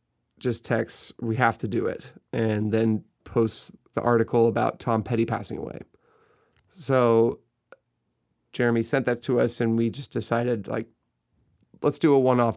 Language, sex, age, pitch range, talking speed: English, male, 30-49, 115-135 Hz, 155 wpm